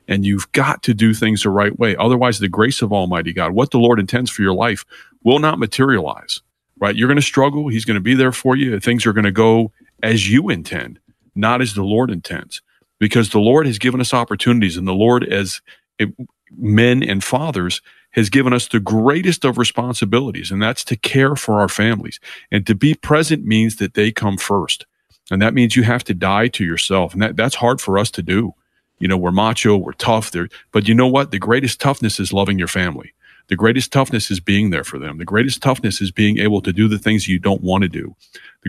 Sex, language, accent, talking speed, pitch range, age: male, English, American, 225 wpm, 100-125 Hz, 40-59